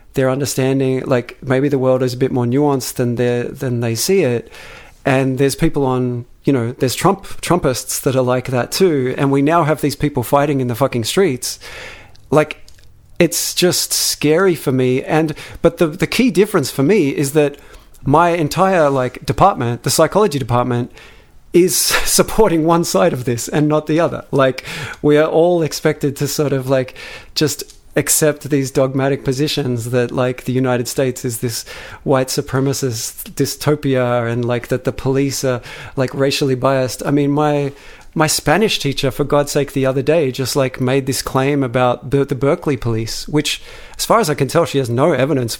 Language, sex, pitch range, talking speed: English, male, 125-150 Hz, 185 wpm